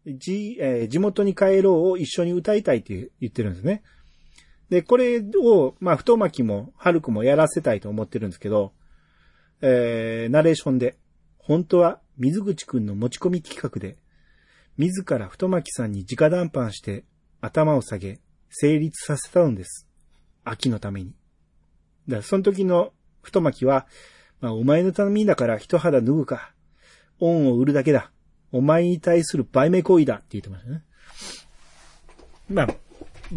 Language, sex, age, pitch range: Japanese, male, 40-59, 110-175 Hz